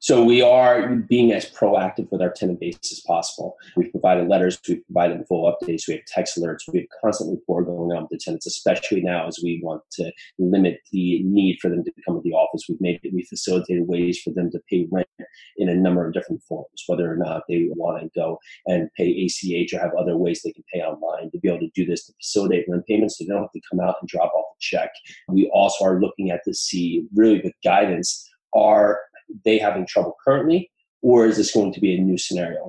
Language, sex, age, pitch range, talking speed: English, male, 30-49, 90-110 Hz, 235 wpm